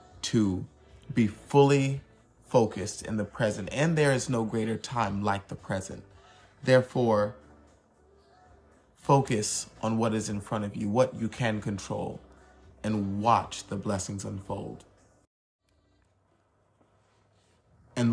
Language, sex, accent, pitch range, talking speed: English, male, American, 95-115 Hz, 115 wpm